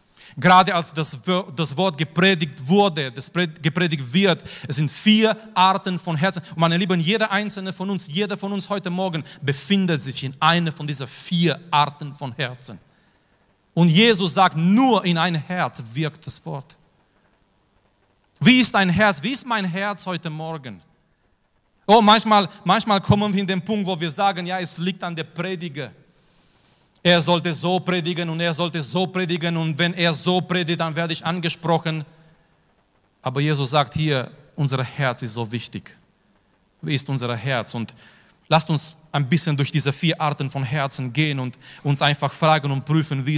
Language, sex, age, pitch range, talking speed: German, male, 40-59, 145-180 Hz, 175 wpm